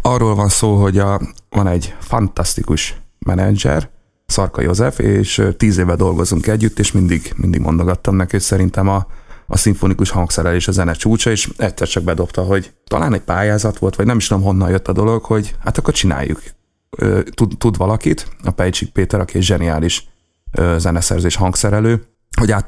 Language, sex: Hungarian, male